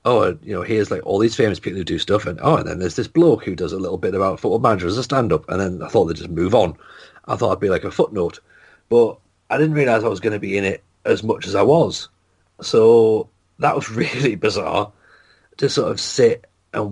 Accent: British